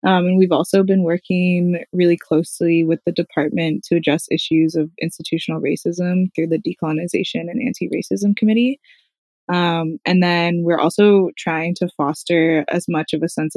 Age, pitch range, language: 20-39, 160-180 Hz, English